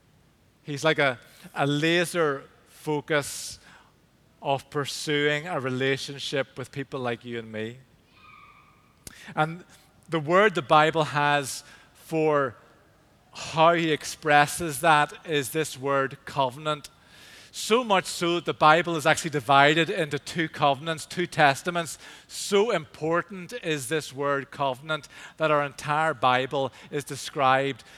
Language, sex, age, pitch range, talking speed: English, male, 40-59, 140-165 Hz, 120 wpm